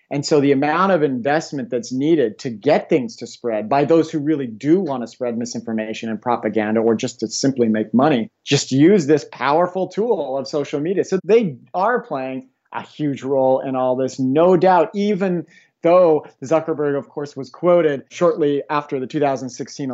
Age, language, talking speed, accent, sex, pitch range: 40-59, English, 185 wpm, American, male, 130-155 Hz